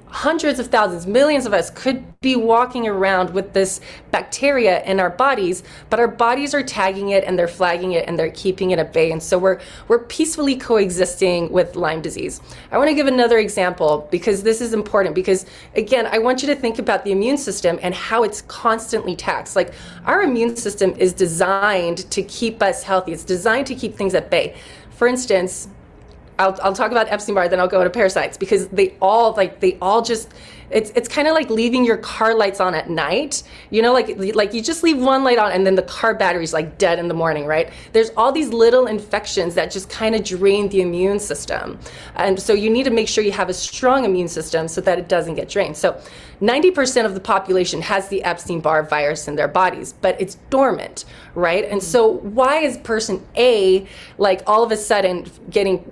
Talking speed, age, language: 210 wpm, 20-39, English